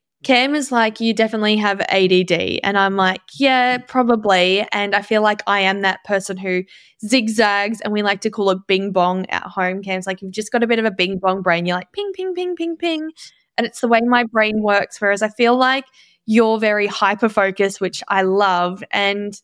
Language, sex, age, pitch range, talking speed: English, female, 10-29, 195-240 Hz, 215 wpm